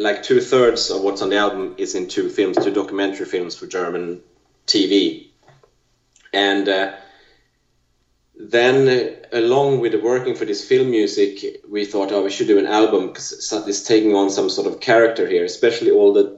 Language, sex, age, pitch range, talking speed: English, male, 30-49, 370-410 Hz, 185 wpm